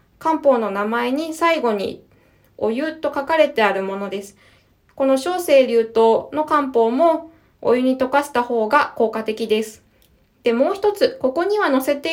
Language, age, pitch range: Japanese, 20-39, 235-315 Hz